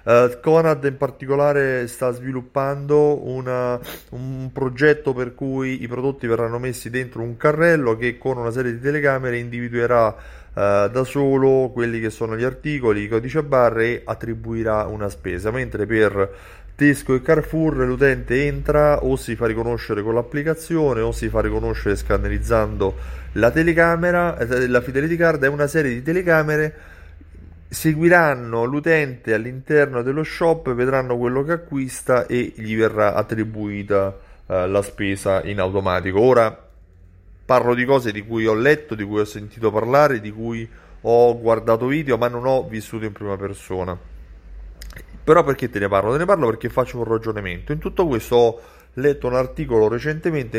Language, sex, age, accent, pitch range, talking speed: Italian, male, 30-49, native, 110-135 Hz, 155 wpm